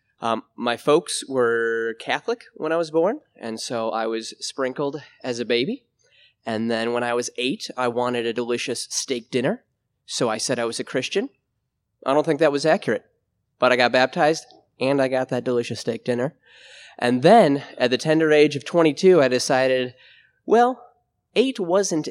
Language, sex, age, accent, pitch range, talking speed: English, male, 20-39, American, 120-155 Hz, 180 wpm